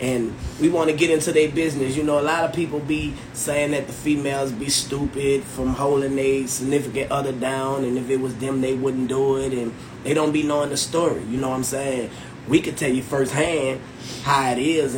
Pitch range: 125-145 Hz